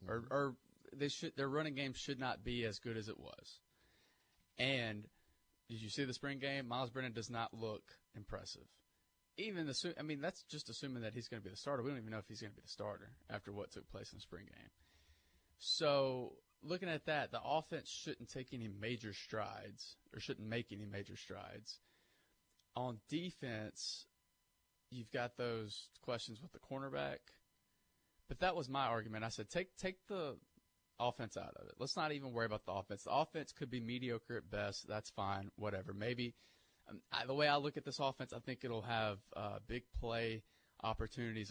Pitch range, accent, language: 105-135 Hz, American, English